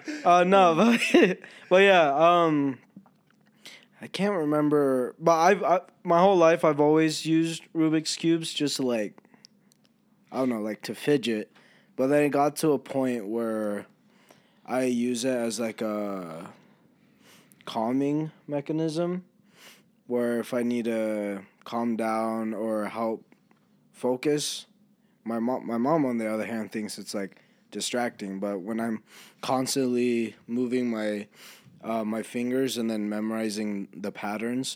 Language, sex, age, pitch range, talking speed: English, male, 20-39, 110-155 Hz, 140 wpm